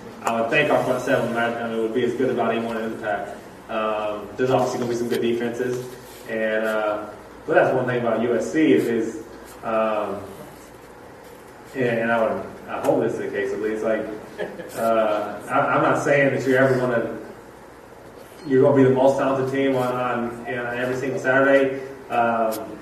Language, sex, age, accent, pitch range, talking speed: English, male, 20-39, American, 115-130 Hz, 195 wpm